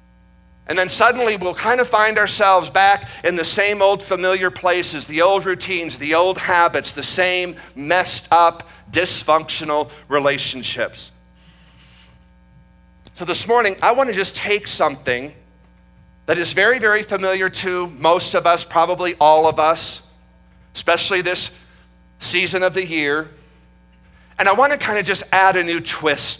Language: English